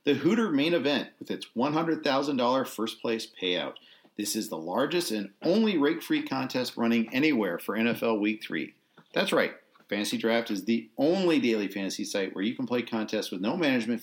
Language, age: English, 40-59